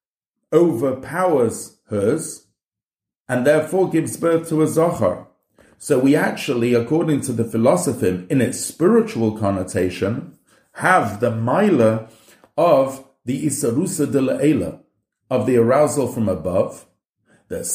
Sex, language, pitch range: male, English, 105-150 Hz